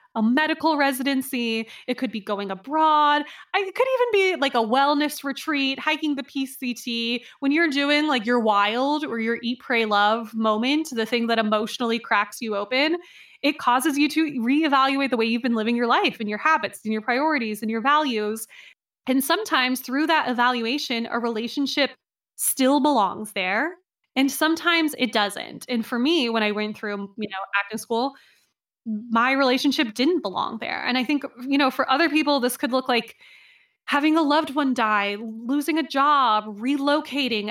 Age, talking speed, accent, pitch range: 20-39, 175 wpm, American, 225-295 Hz